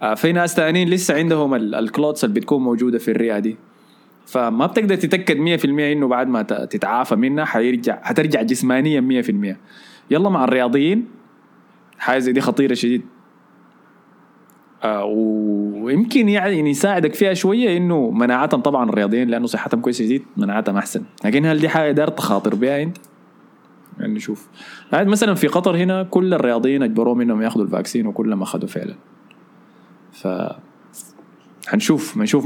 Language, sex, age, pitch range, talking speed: Arabic, male, 20-39, 115-165 Hz, 135 wpm